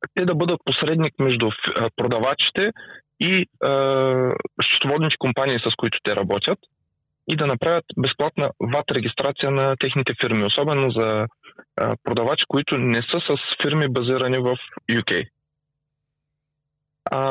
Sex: male